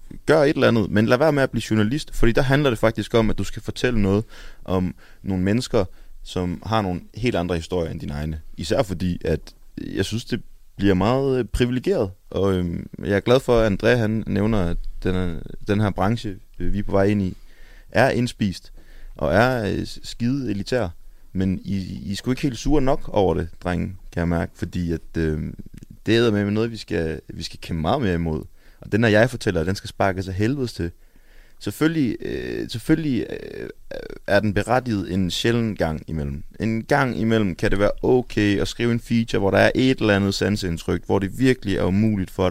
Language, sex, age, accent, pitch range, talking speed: Danish, male, 30-49, native, 90-115 Hz, 200 wpm